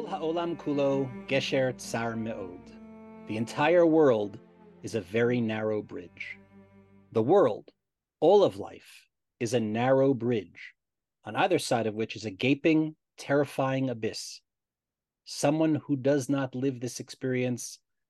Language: English